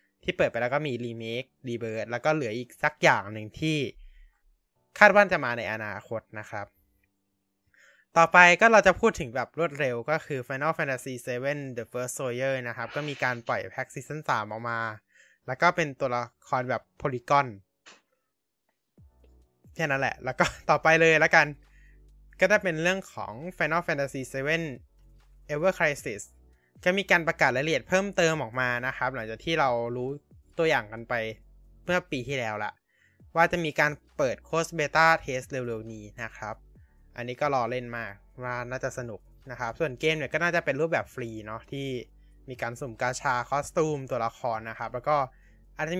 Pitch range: 110-160 Hz